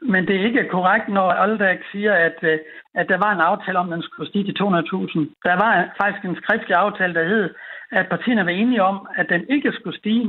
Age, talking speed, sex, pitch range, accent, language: 60-79, 235 wpm, male, 170-220 Hz, native, Danish